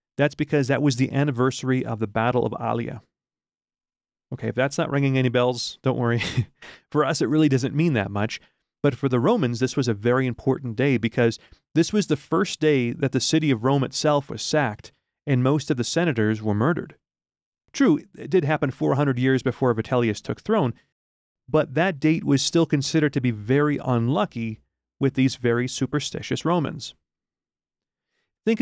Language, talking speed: English, 180 wpm